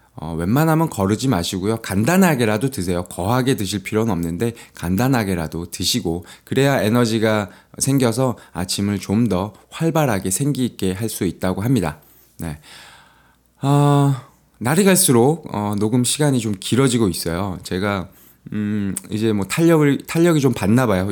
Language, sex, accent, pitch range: Korean, male, native, 90-135 Hz